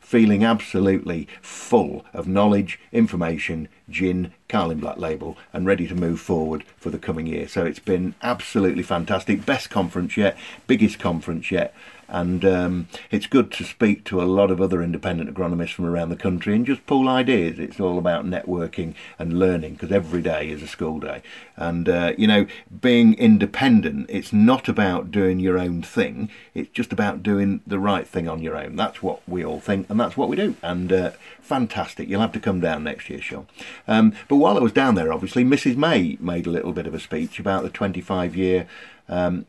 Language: English